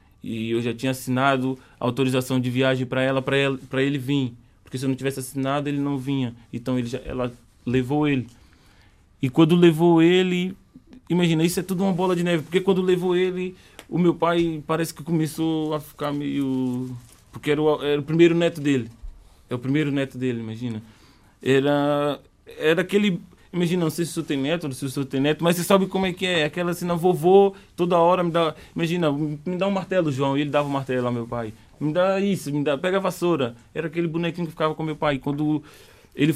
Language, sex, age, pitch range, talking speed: Portuguese, male, 20-39, 135-175 Hz, 220 wpm